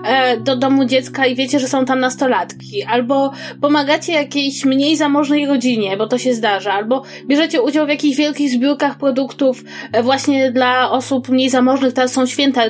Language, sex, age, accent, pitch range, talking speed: Polish, female, 20-39, native, 245-295 Hz, 165 wpm